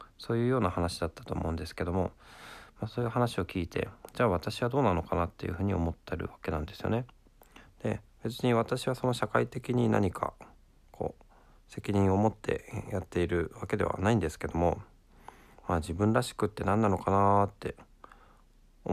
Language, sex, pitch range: Japanese, male, 85-115 Hz